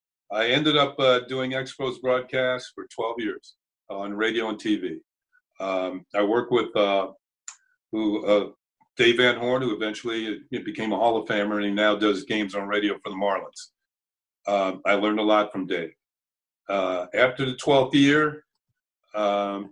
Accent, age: American, 50-69